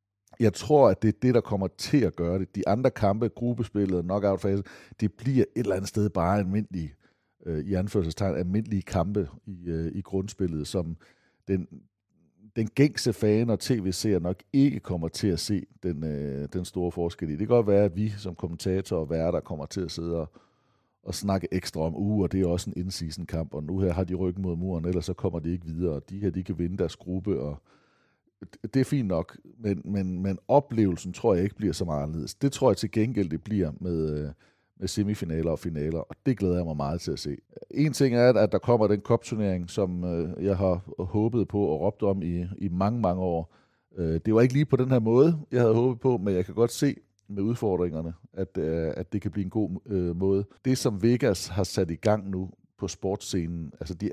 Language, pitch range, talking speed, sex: Danish, 85-105 Hz, 215 wpm, male